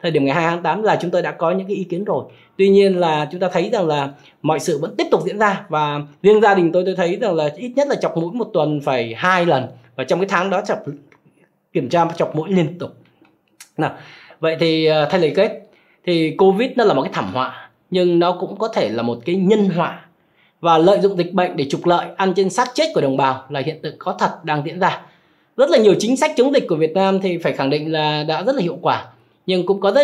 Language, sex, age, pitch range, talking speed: Vietnamese, male, 20-39, 155-195 Hz, 265 wpm